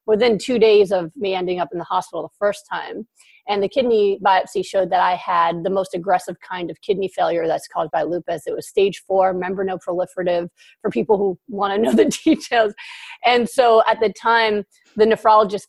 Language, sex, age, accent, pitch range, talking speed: English, female, 30-49, American, 185-240 Hz, 200 wpm